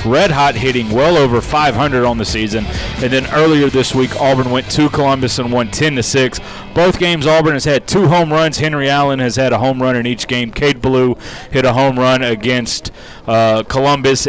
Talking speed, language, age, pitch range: 210 wpm, English, 30-49, 120-140 Hz